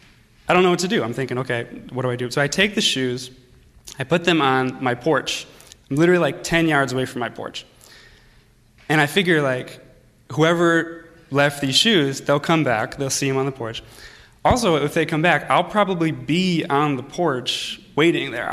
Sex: male